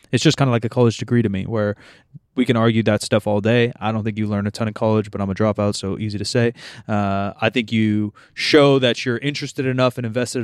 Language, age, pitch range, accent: English, 20-39, 110-130 Hz, American